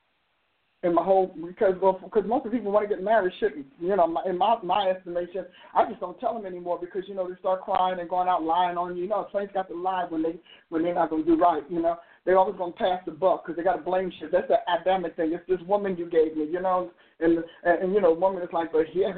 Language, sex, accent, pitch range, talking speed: English, male, American, 175-205 Hz, 295 wpm